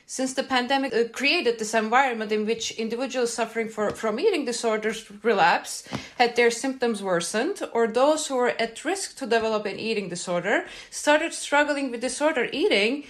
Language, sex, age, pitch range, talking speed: English, female, 30-49, 200-240 Hz, 155 wpm